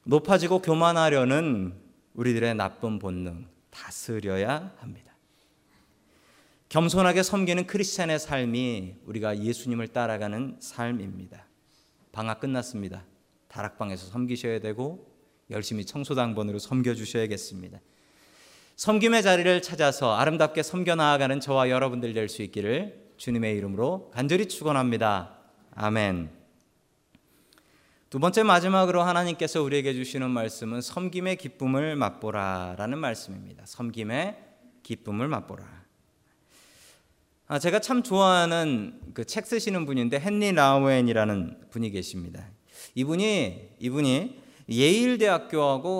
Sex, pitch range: male, 110-165 Hz